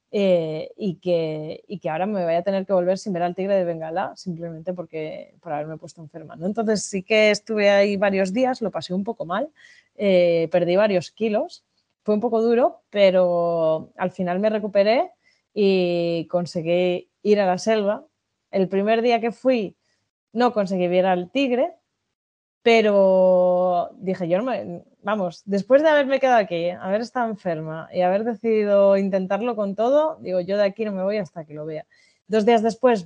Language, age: Spanish, 20-39